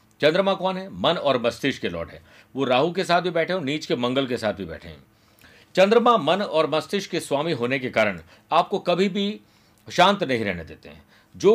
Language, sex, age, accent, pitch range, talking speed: Hindi, male, 50-69, native, 125-190 Hz, 220 wpm